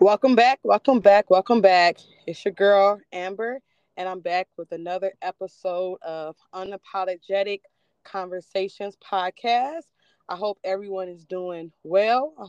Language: English